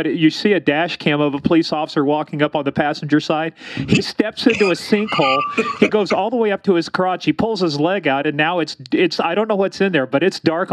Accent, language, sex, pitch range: American, English, male, 140-170 Hz